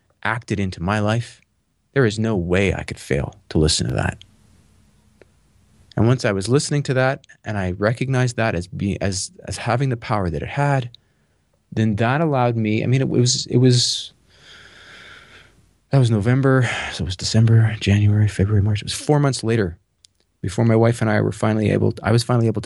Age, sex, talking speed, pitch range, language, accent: 30-49, male, 195 wpm, 95-120 Hz, English, American